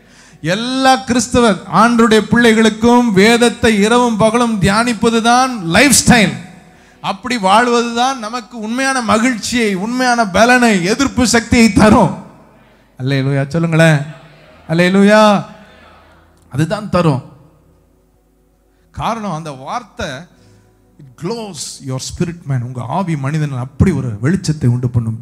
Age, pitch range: 30-49, 140-220 Hz